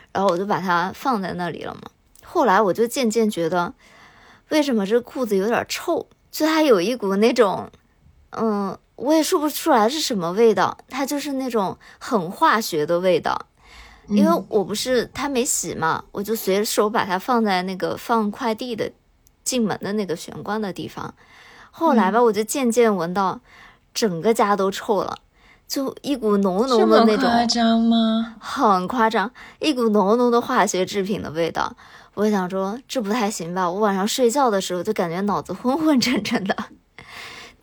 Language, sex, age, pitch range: Chinese, male, 20-39, 190-240 Hz